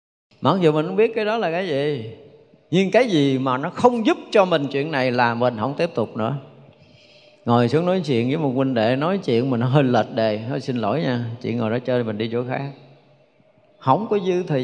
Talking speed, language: 235 wpm, Vietnamese